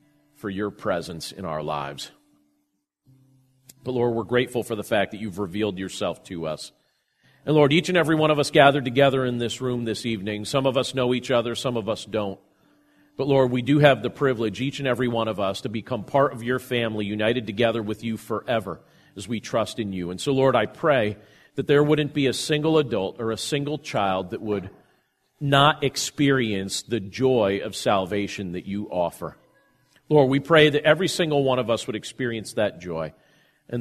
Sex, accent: male, American